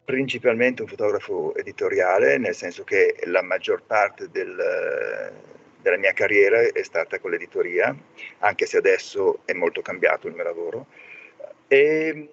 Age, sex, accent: 40-59, male, native